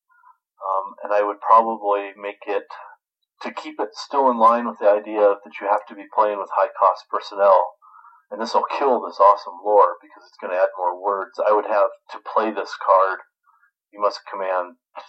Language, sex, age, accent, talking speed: English, male, 40-59, American, 190 wpm